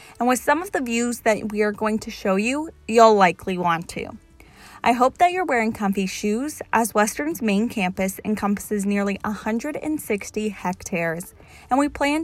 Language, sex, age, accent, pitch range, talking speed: English, female, 20-39, American, 190-245 Hz, 170 wpm